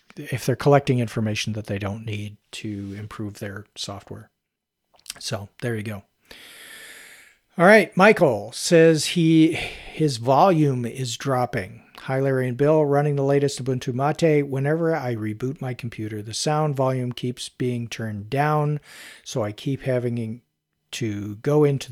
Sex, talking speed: male, 145 wpm